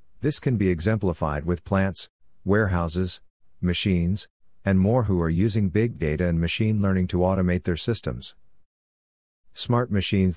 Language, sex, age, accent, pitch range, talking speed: English, male, 50-69, American, 85-100 Hz, 140 wpm